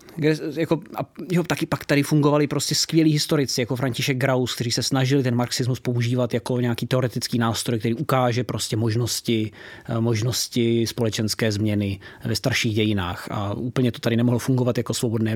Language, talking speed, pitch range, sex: Czech, 160 wpm, 120-145 Hz, male